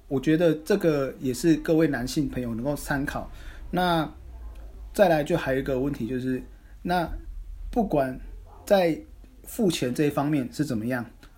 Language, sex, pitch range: Chinese, male, 125-160 Hz